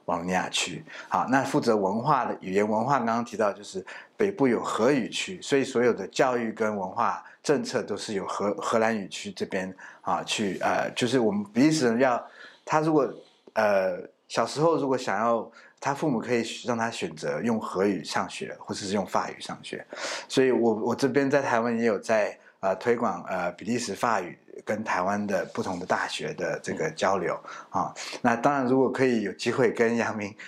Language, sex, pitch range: Chinese, male, 110-135 Hz